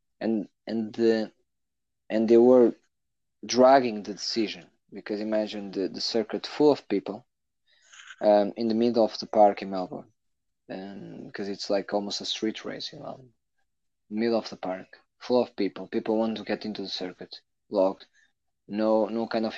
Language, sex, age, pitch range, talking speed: English, male, 20-39, 95-115 Hz, 165 wpm